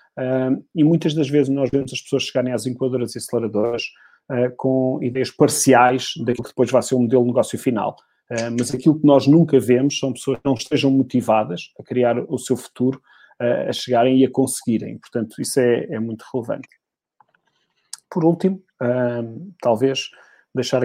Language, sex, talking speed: Portuguese, male, 185 wpm